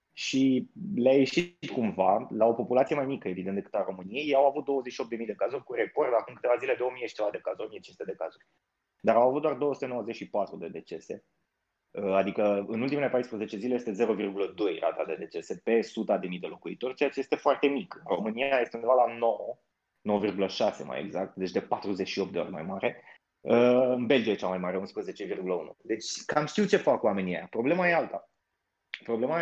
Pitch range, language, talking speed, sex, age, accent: 110-145 Hz, Romanian, 190 wpm, male, 20-39, native